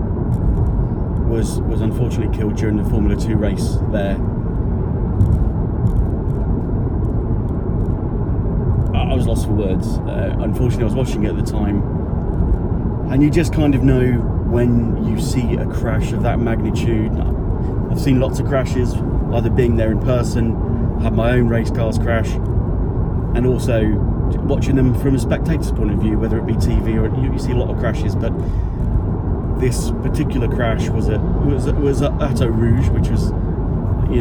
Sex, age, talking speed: male, 30-49, 160 wpm